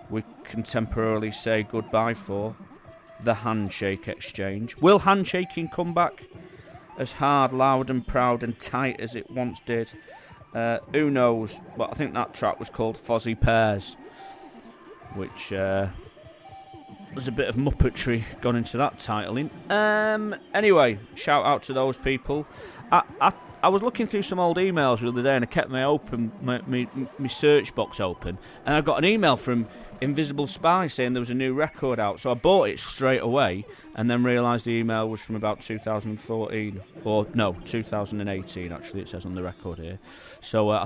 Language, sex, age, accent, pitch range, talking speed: English, male, 30-49, British, 110-135 Hz, 175 wpm